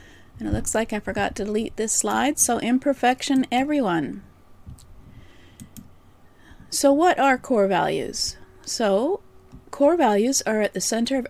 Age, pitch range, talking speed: 40-59, 190-255 Hz, 135 wpm